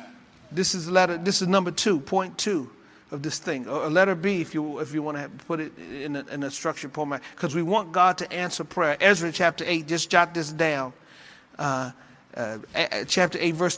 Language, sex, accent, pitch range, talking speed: English, male, American, 155-180 Hz, 220 wpm